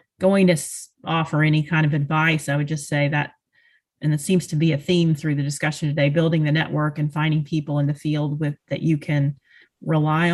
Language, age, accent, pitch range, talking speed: English, 30-49, American, 145-165 Hz, 215 wpm